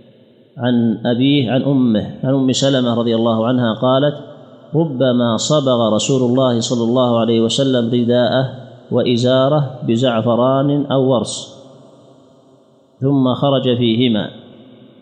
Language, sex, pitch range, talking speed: Arabic, male, 120-135 Hz, 110 wpm